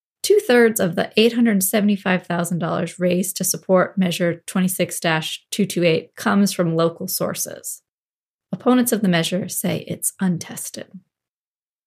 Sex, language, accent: female, English, American